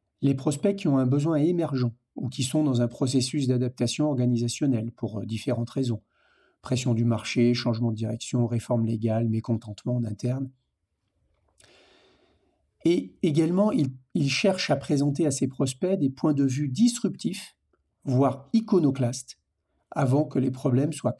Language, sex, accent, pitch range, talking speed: French, male, French, 120-155 Hz, 140 wpm